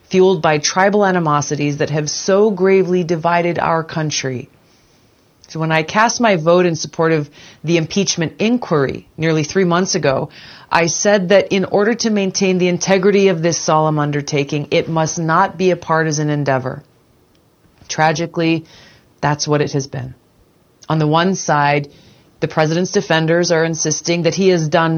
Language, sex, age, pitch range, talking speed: English, female, 30-49, 145-185 Hz, 160 wpm